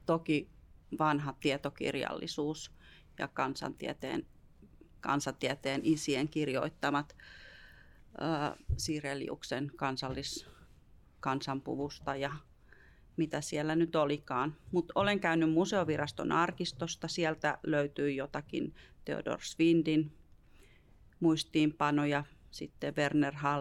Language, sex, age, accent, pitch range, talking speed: Finnish, female, 30-49, native, 140-160 Hz, 75 wpm